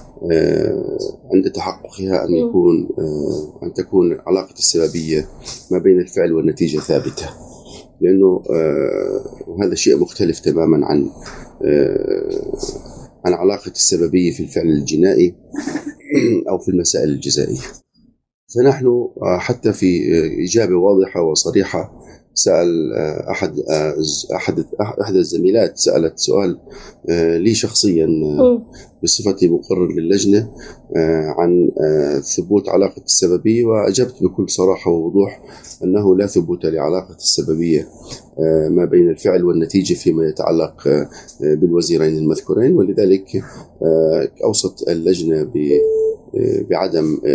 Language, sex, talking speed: Arabic, male, 100 wpm